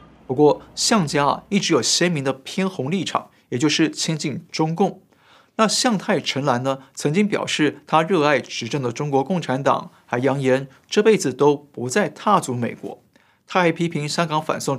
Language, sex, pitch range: Chinese, male, 135-185 Hz